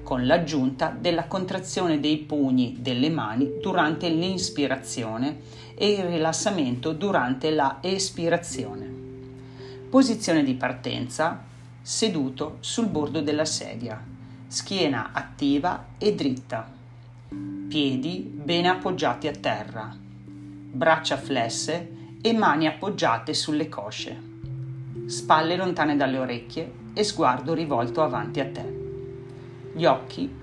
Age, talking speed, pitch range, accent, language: 40-59, 105 wpm, 125-165 Hz, native, Italian